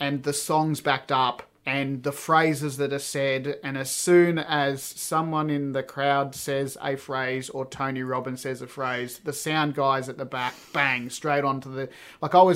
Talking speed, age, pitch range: 195 wpm, 30-49, 135-160 Hz